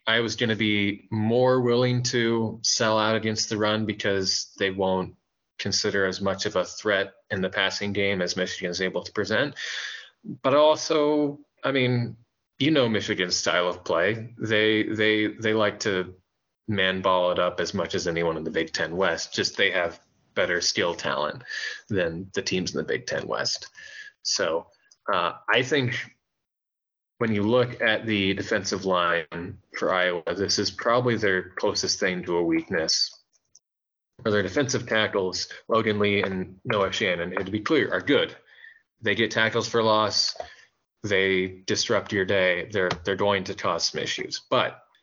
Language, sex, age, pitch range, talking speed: English, male, 20-39, 95-120 Hz, 170 wpm